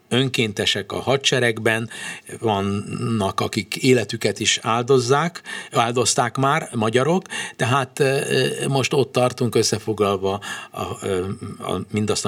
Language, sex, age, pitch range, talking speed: Hungarian, male, 60-79, 100-125 Hz, 85 wpm